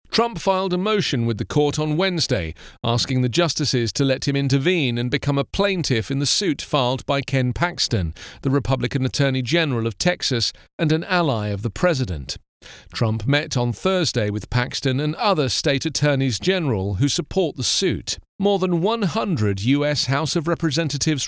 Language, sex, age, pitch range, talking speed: English, male, 40-59, 120-165 Hz, 170 wpm